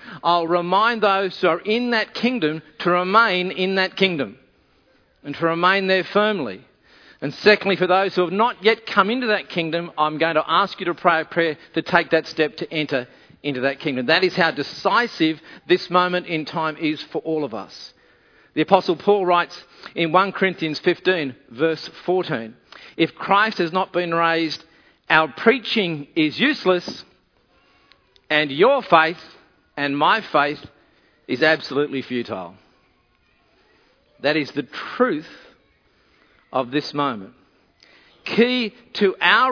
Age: 50-69